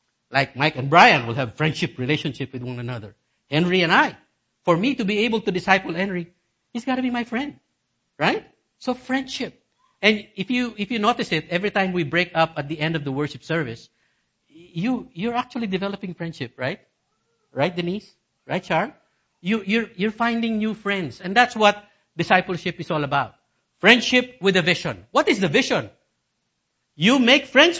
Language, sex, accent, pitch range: English, male, Filipino, 135-200 Hz